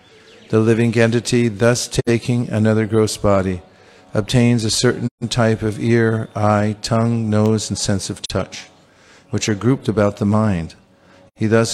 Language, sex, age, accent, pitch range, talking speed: English, male, 50-69, American, 100-125 Hz, 150 wpm